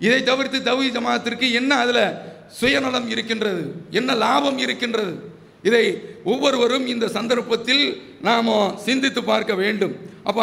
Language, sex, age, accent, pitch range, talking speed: English, male, 50-69, Indian, 170-225 Hz, 115 wpm